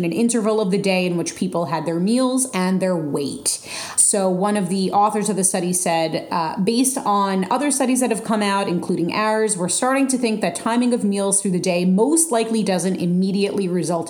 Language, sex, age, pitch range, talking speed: English, female, 30-49, 180-220 Hz, 215 wpm